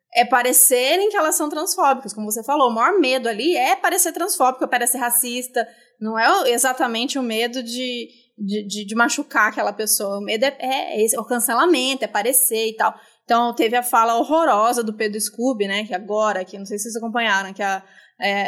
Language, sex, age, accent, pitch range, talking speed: Portuguese, female, 20-39, Brazilian, 230-280 Hz, 200 wpm